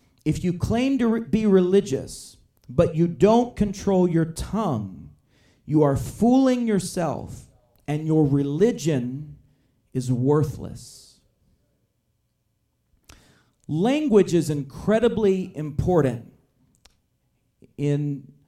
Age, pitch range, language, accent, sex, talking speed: 40-59, 135-170 Hz, English, American, male, 85 wpm